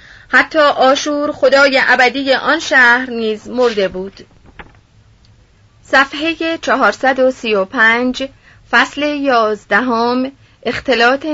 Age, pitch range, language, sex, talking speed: 30-49, 210-275 Hz, Persian, female, 75 wpm